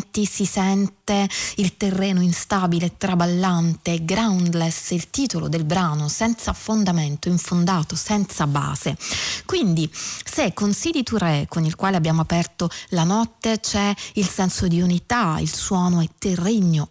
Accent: native